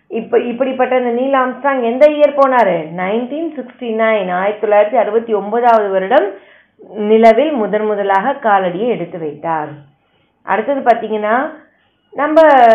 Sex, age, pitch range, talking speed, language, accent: female, 20-39, 205-265 Hz, 85 wpm, Tamil, native